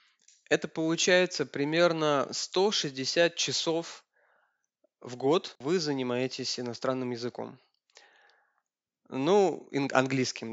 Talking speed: 75 wpm